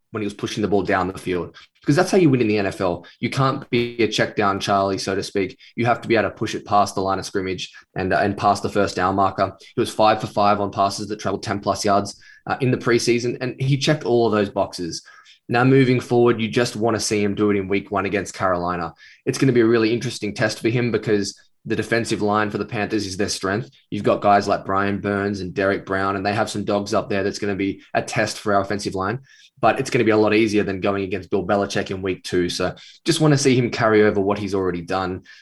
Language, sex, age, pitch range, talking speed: English, male, 10-29, 100-120 Hz, 275 wpm